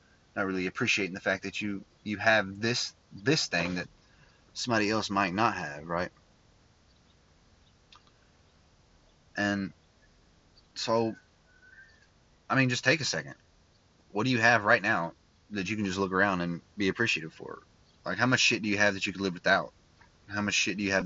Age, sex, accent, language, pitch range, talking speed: 30-49, male, American, English, 90-110 Hz, 175 wpm